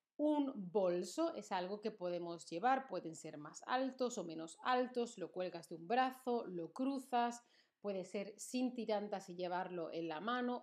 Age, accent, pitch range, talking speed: 40-59, Spanish, 185-240 Hz, 170 wpm